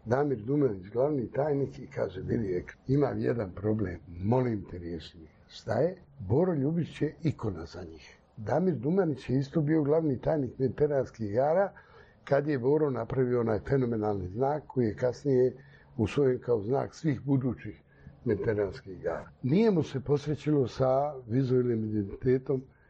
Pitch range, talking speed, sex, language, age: 110-145 Hz, 145 wpm, male, Croatian, 60-79